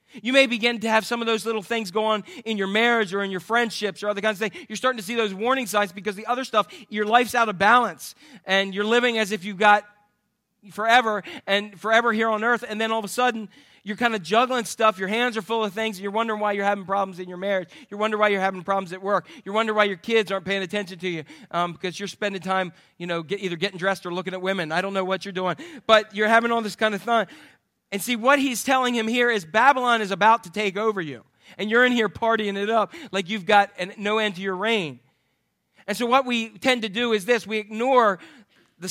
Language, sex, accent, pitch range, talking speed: English, male, American, 195-230 Hz, 260 wpm